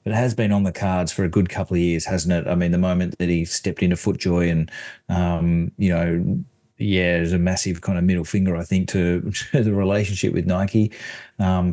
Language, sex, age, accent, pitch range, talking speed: English, male, 30-49, Australian, 95-110 Hz, 225 wpm